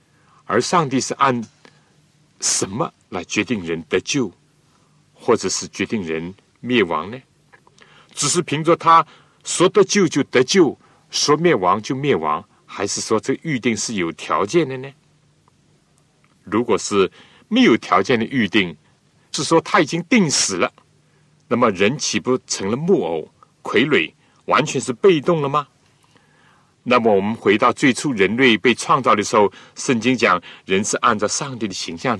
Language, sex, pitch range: Chinese, male, 125-165 Hz